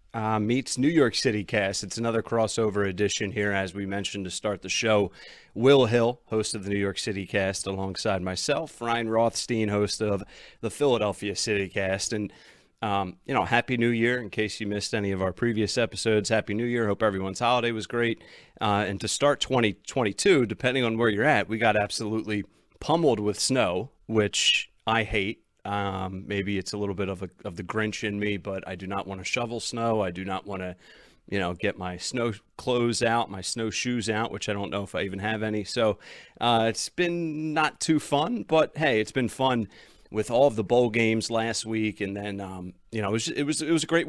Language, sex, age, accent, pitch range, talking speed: English, male, 30-49, American, 100-115 Hz, 215 wpm